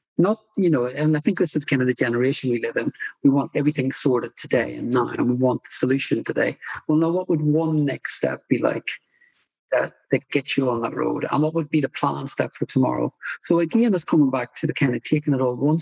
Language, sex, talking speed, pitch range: English, male, 250 wpm, 135-170 Hz